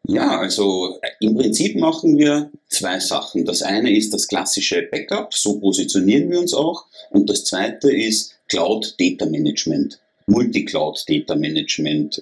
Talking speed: 125 wpm